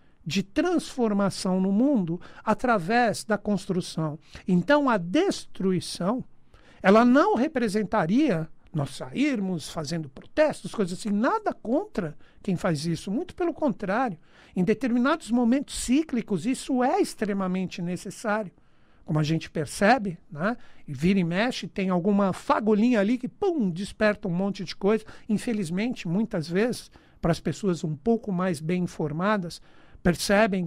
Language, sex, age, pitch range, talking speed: Portuguese, male, 60-79, 175-240 Hz, 130 wpm